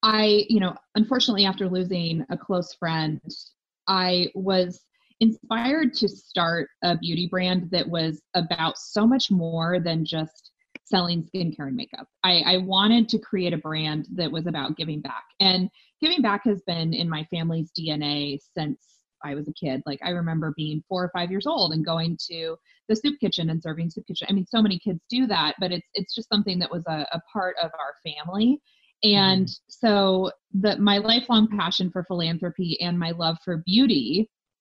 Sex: female